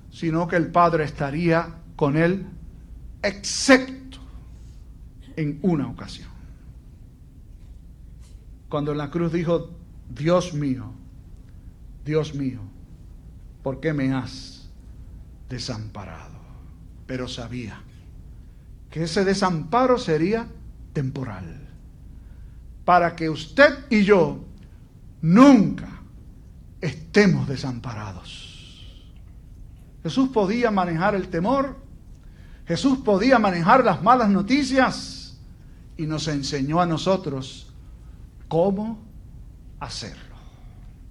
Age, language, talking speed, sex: 60-79, Spanish, 85 wpm, male